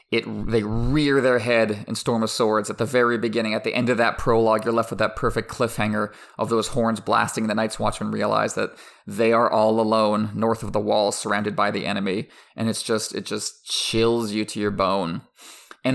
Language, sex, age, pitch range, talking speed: English, male, 30-49, 110-120 Hz, 215 wpm